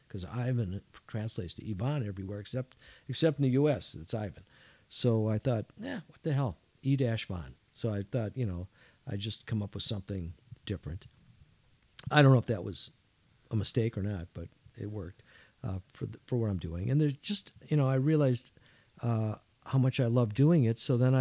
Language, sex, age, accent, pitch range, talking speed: English, male, 50-69, American, 110-140 Hz, 195 wpm